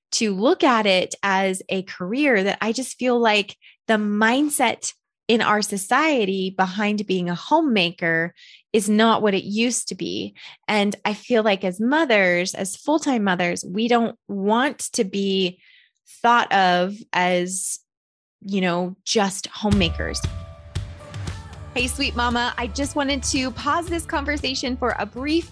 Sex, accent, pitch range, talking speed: female, American, 200-260 Hz, 150 wpm